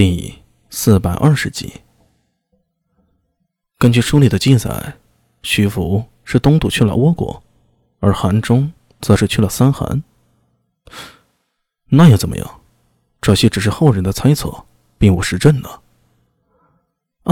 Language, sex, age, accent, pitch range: Chinese, male, 20-39, native, 105-150 Hz